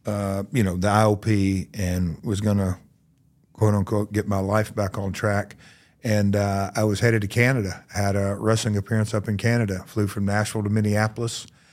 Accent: American